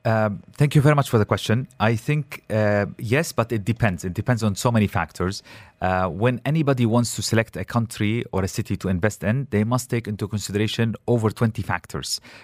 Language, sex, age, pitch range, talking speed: English, male, 30-49, 95-120 Hz, 205 wpm